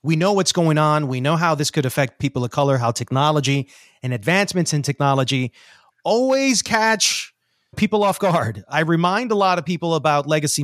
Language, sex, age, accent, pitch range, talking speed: English, male, 30-49, American, 135-195 Hz, 185 wpm